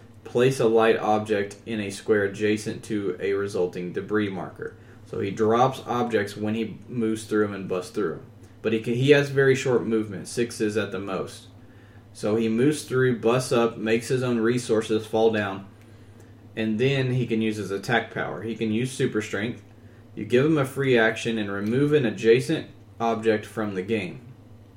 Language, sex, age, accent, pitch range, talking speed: English, male, 20-39, American, 105-120 Hz, 185 wpm